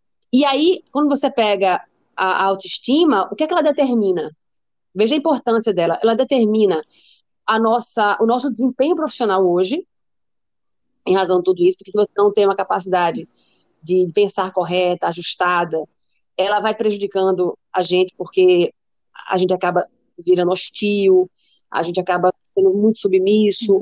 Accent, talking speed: Brazilian, 150 wpm